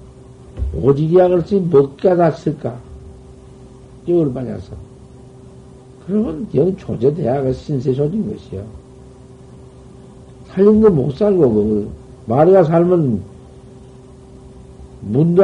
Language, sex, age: Korean, male, 60-79